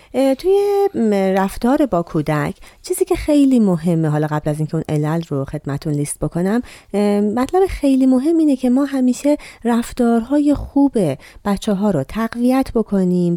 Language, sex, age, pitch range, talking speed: Persian, female, 30-49, 165-265 Hz, 140 wpm